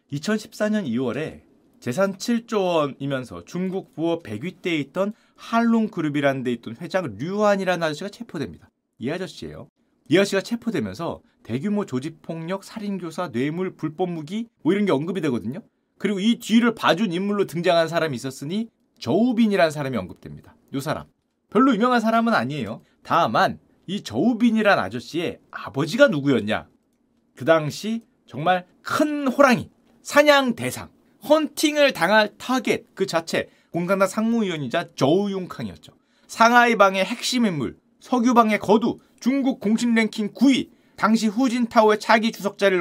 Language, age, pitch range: Korean, 30-49, 165-240 Hz